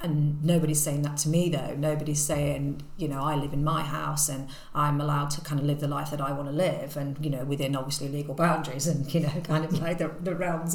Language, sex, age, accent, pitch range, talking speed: English, female, 40-59, British, 150-175 Hz, 255 wpm